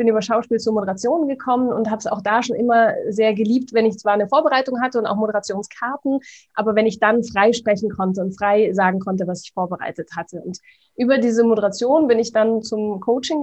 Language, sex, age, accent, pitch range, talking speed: German, female, 20-39, German, 200-235 Hz, 215 wpm